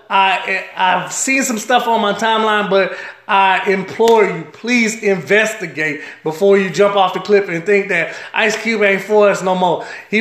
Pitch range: 185-210 Hz